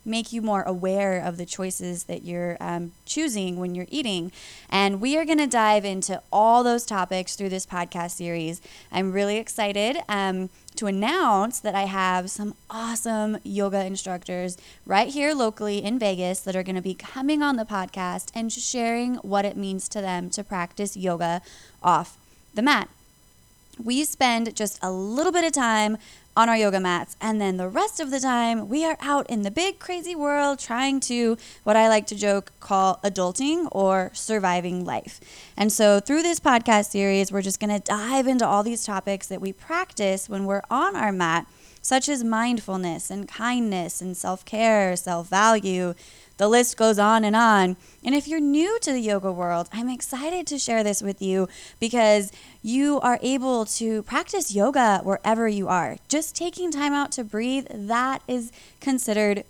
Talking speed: 180 wpm